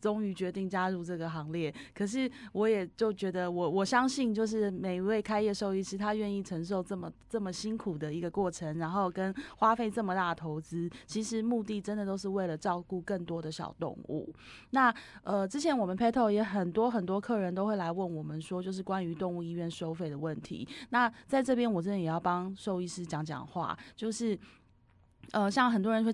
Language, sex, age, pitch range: Chinese, female, 20-39, 175-215 Hz